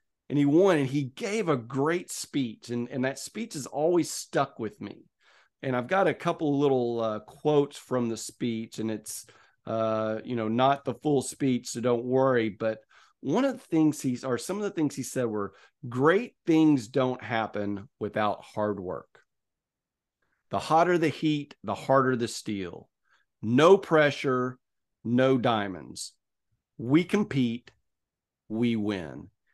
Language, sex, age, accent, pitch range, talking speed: English, male, 40-59, American, 115-155 Hz, 160 wpm